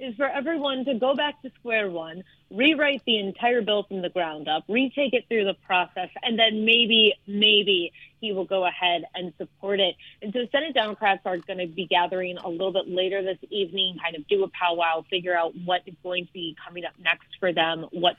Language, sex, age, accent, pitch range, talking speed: English, female, 30-49, American, 175-210 Hz, 220 wpm